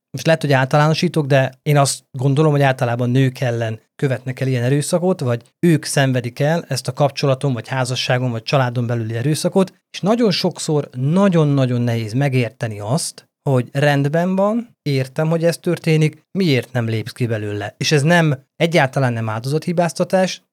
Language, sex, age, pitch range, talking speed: Hungarian, male, 30-49, 125-165 Hz, 160 wpm